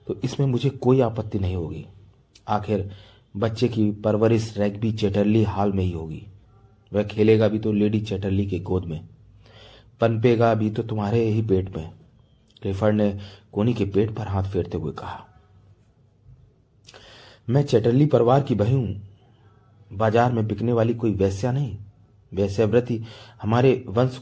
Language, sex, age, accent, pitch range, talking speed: Hindi, male, 30-49, native, 100-115 Hz, 145 wpm